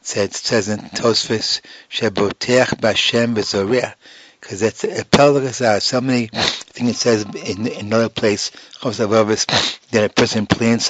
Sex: male